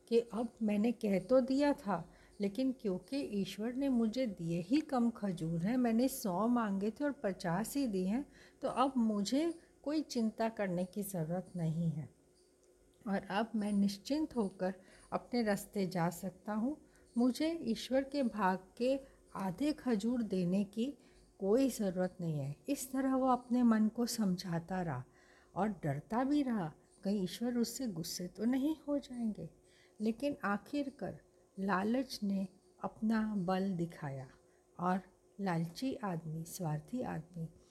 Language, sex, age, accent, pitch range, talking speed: Hindi, female, 60-79, native, 180-240 Hz, 145 wpm